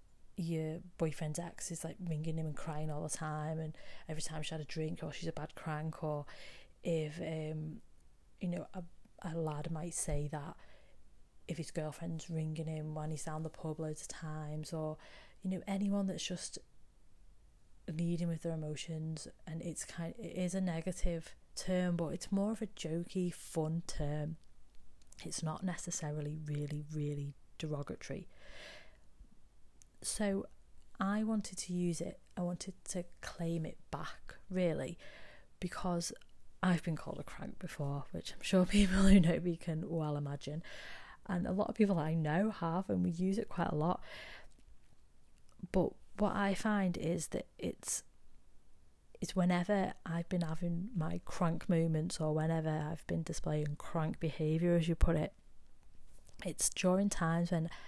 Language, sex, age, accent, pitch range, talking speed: English, female, 30-49, British, 155-180 Hz, 160 wpm